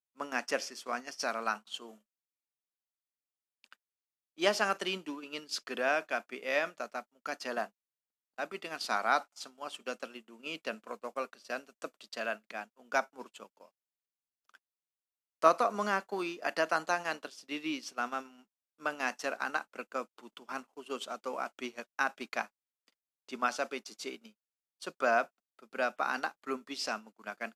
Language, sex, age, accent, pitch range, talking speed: Indonesian, male, 40-59, native, 115-170 Hz, 105 wpm